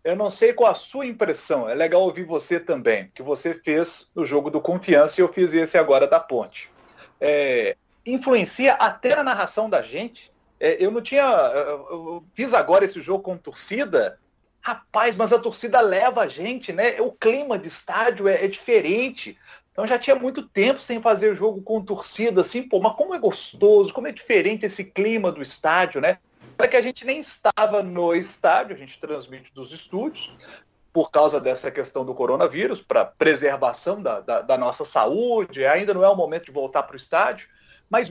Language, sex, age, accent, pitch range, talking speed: Portuguese, male, 40-59, Brazilian, 180-265 Hz, 190 wpm